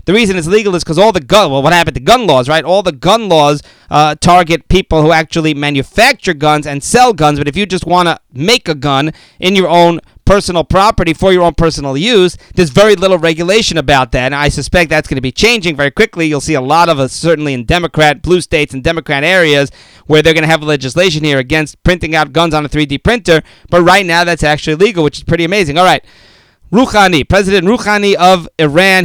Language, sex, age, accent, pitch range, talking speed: English, male, 30-49, American, 155-195 Hz, 230 wpm